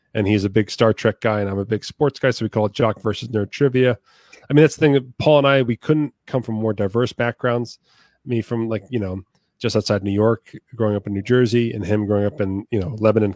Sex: male